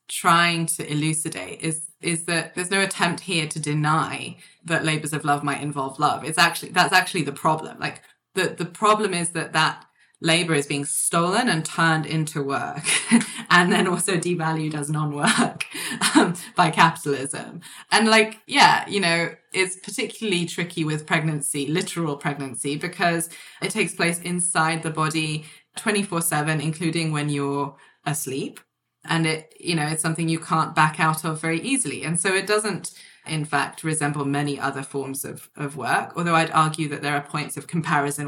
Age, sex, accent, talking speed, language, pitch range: 20-39, female, British, 170 wpm, English, 145-170 Hz